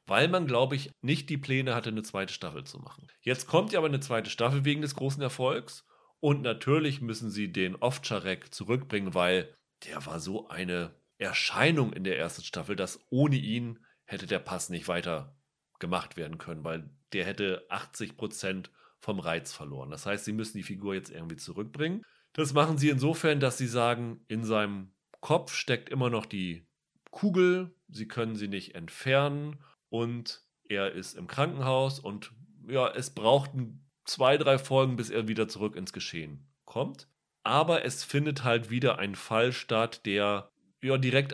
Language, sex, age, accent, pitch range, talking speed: German, male, 40-59, German, 105-140 Hz, 170 wpm